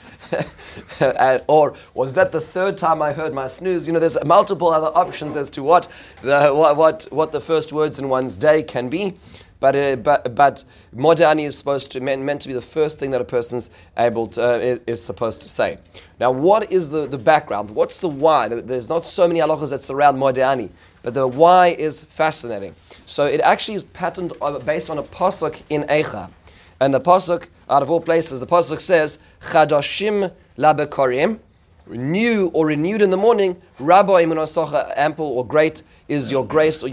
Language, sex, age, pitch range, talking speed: English, male, 30-49, 130-165 Hz, 190 wpm